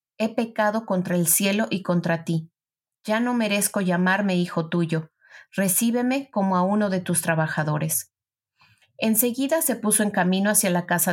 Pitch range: 175-220 Hz